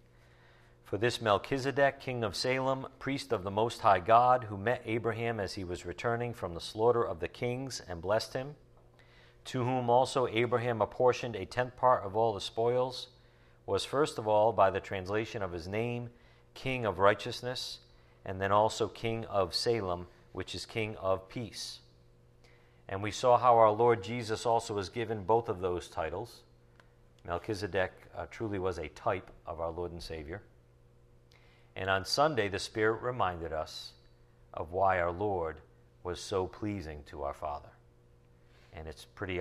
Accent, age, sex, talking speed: American, 50-69, male, 165 wpm